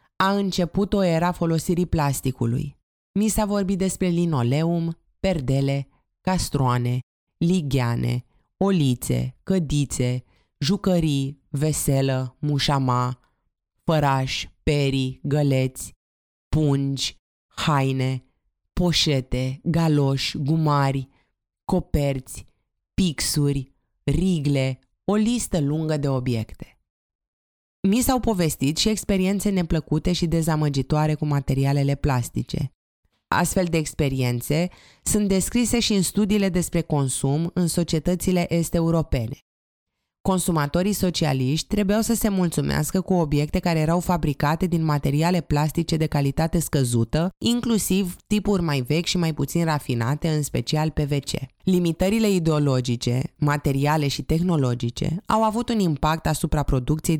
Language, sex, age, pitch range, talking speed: Romanian, female, 20-39, 135-175 Hz, 105 wpm